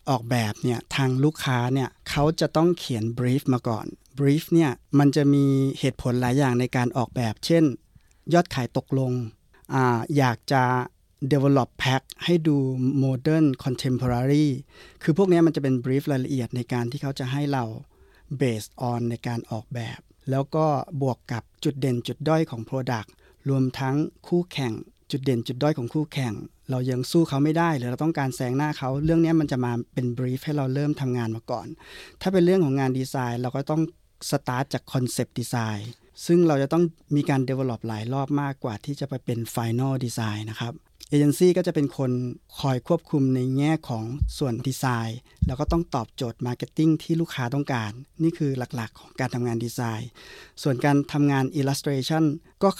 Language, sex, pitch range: Thai, male, 125-150 Hz